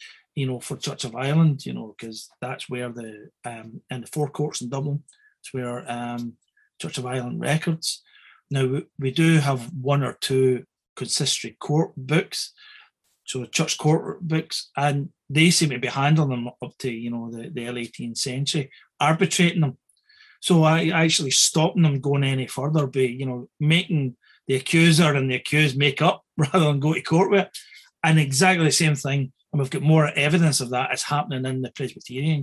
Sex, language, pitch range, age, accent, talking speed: male, English, 130-165 Hz, 30-49, British, 190 wpm